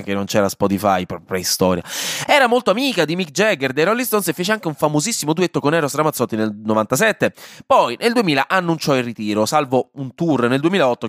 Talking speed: 200 wpm